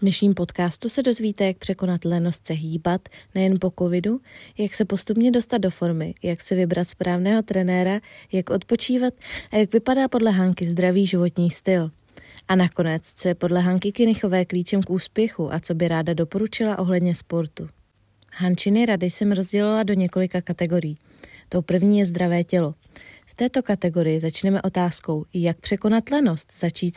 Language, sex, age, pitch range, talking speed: Czech, female, 20-39, 175-215 Hz, 160 wpm